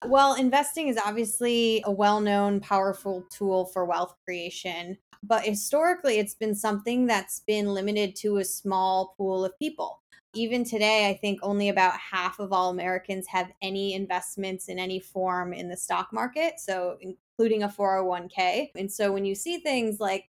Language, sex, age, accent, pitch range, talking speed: English, female, 20-39, American, 185-215 Hz, 170 wpm